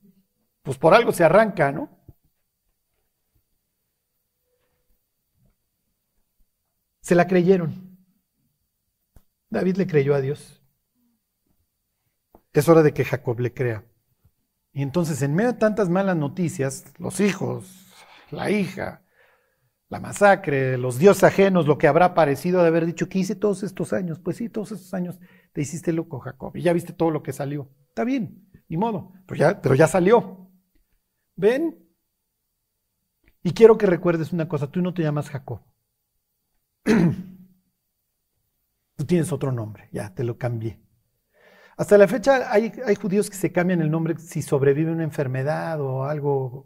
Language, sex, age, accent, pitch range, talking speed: Spanish, male, 50-69, Mexican, 130-185 Hz, 145 wpm